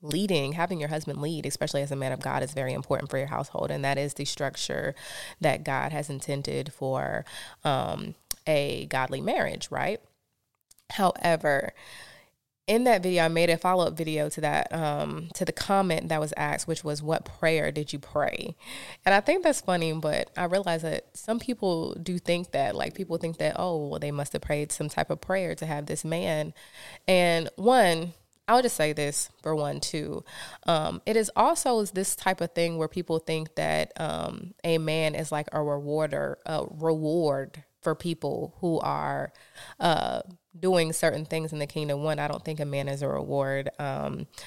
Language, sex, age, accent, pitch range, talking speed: English, female, 20-39, American, 145-175 Hz, 190 wpm